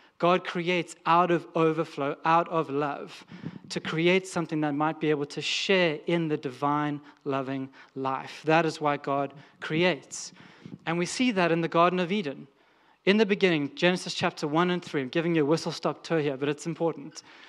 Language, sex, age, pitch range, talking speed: English, male, 30-49, 150-175 Hz, 185 wpm